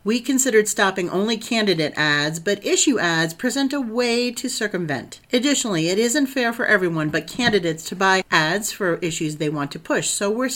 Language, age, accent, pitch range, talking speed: English, 50-69, American, 160-220 Hz, 190 wpm